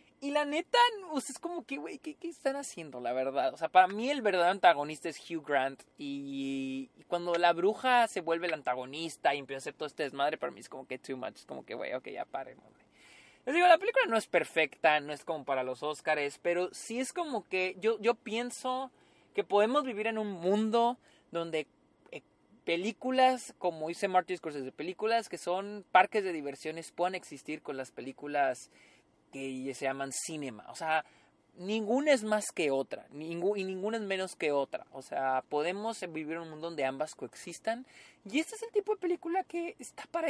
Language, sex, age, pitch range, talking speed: Spanish, male, 20-39, 150-230 Hz, 205 wpm